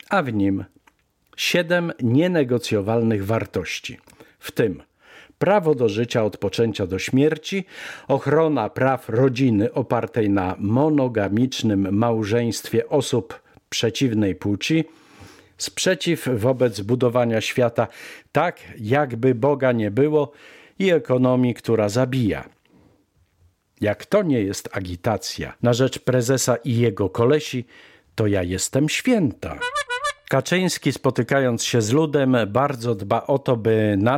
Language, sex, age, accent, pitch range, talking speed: Polish, male, 50-69, native, 110-145 Hz, 110 wpm